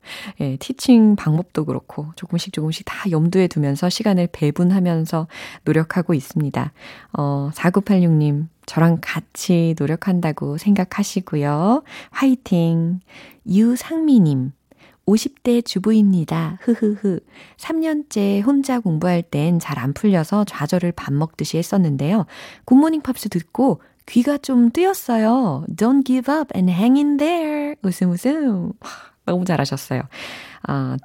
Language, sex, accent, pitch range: Korean, female, native, 155-225 Hz